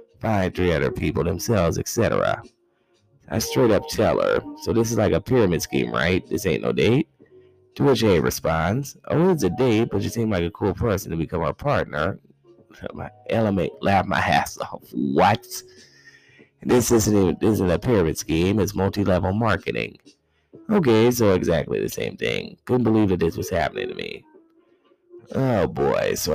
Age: 30-49